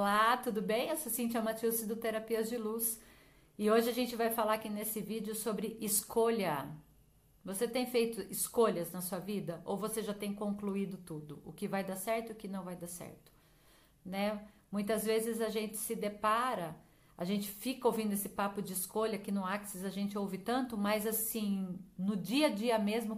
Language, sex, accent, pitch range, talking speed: Portuguese, female, Brazilian, 200-235 Hz, 195 wpm